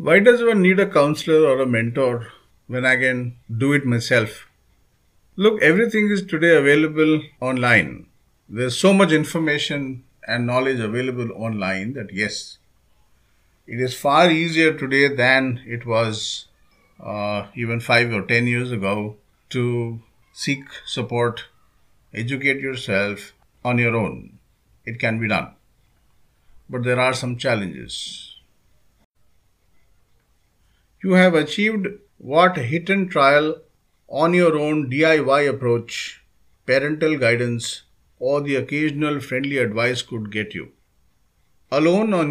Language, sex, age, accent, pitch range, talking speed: English, male, 50-69, Indian, 115-155 Hz, 125 wpm